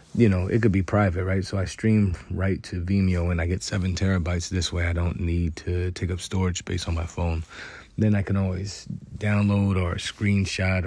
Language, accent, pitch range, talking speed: English, American, 85-95 Hz, 210 wpm